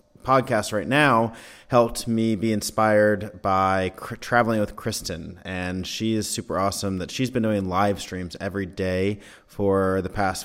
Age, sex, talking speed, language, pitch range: 30-49, male, 155 wpm, English, 90-110 Hz